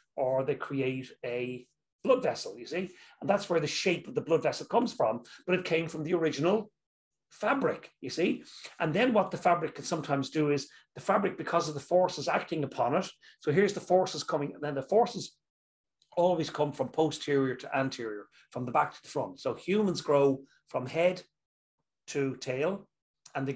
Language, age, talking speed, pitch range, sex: English, 40-59, 195 wpm, 140-180 Hz, male